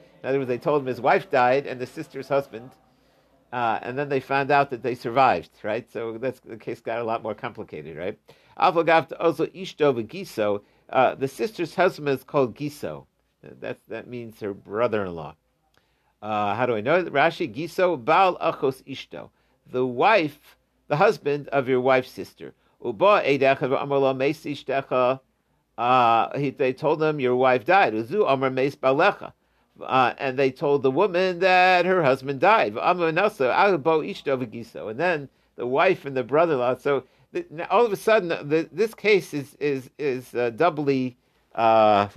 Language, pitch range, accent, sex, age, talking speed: English, 130-165 Hz, American, male, 50-69, 150 wpm